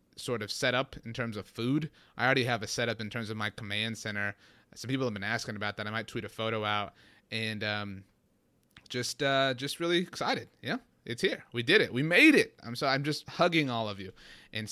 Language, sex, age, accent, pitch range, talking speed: English, male, 30-49, American, 110-130 Hz, 230 wpm